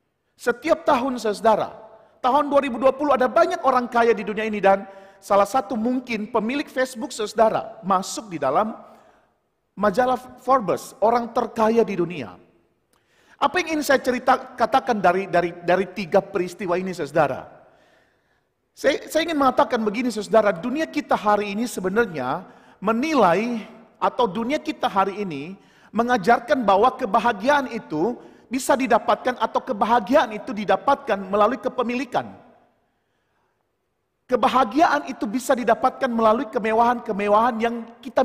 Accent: native